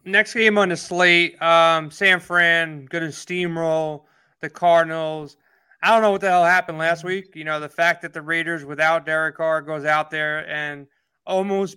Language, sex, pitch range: English, male, 165-190 Hz